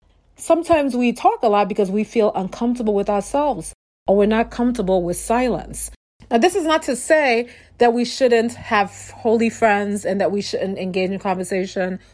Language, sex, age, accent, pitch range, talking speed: English, female, 40-59, American, 195-260 Hz, 180 wpm